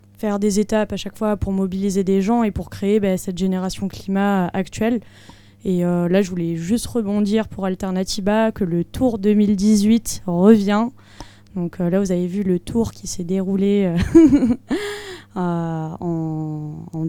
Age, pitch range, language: 20-39, 180-210 Hz, French